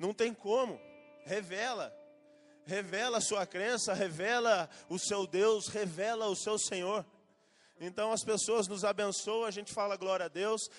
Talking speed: 150 wpm